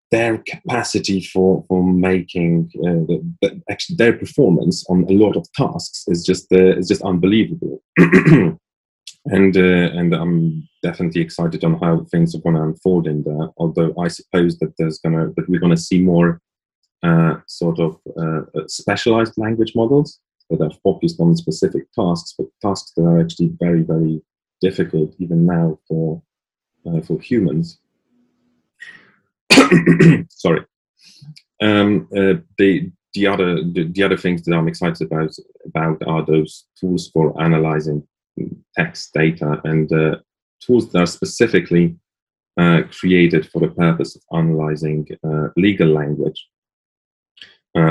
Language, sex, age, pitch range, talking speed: English, male, 30-49, 80-95 Hz, 145 wpm